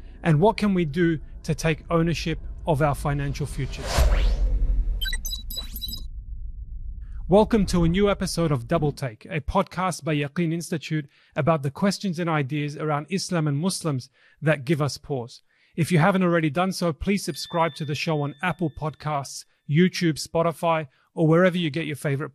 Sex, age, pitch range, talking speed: male, 30-49, 140-175 Hz, 160 wpm